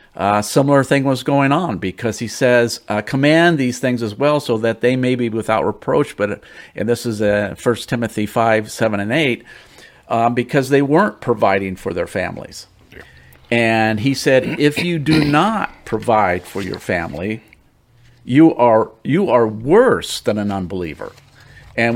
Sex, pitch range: male, 110-150 Hz